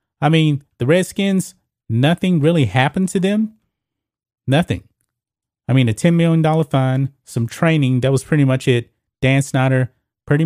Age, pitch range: 30-49, 120-155 Hz